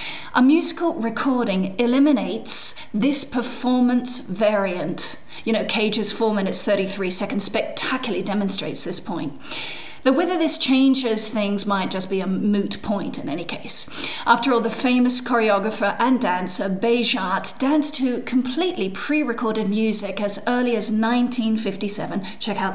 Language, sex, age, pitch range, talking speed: English, female, 40-59, 205-255 Hz, 135 wpm